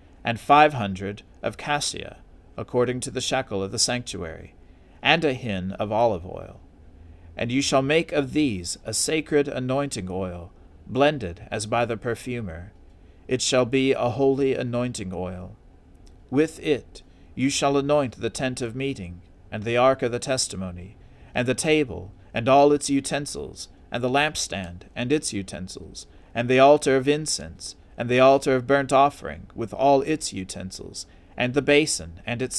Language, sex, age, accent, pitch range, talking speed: English, male, 40-59, American, 90-140 Hz, 160 wpm